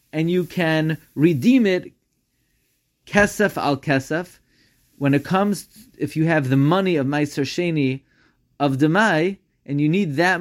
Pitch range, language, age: 140-170 Hz, English, 30-49